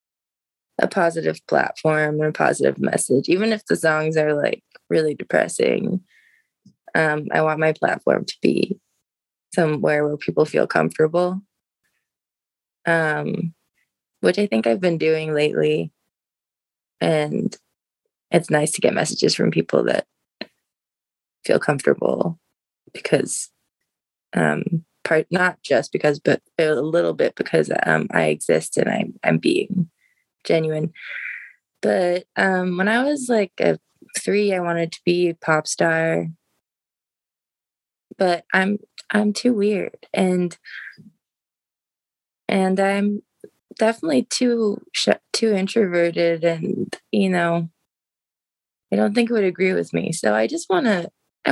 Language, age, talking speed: German, 20-39, 125 wpm